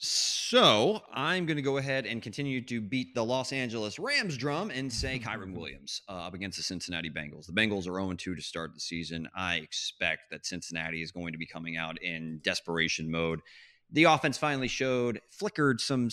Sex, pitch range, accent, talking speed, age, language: male, 95-135 Hz, American, 195 wpm, 30-49, English